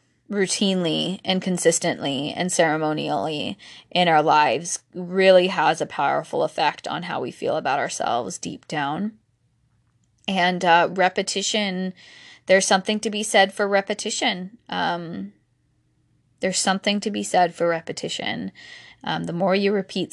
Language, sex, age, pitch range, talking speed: English, female, 10-29, 160-205 Hz, 130 wpm